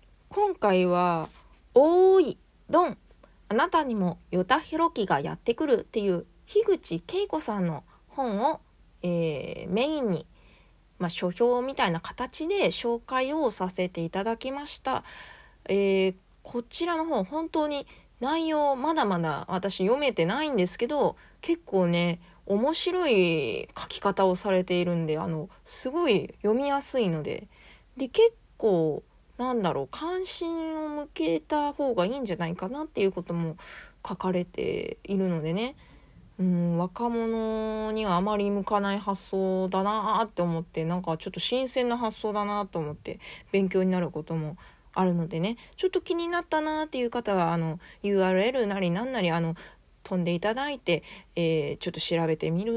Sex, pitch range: female, 180-290 Hz